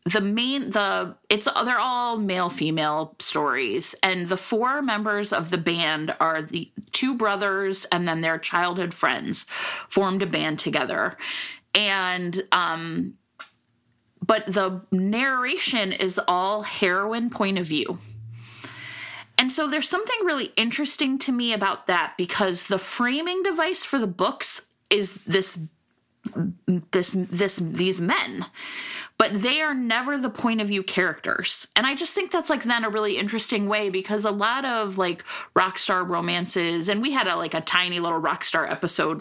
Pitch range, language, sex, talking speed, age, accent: 175-235 Hz, English, female, 155 wpm, 30-49, American